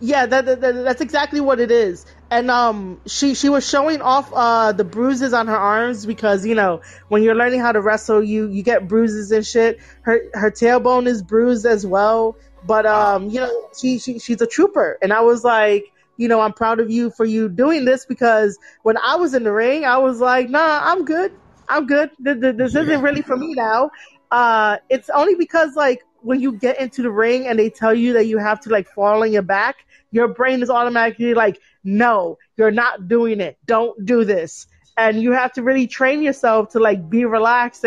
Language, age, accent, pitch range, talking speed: English, 30-49, American, 215-260 Hz, 215 wpm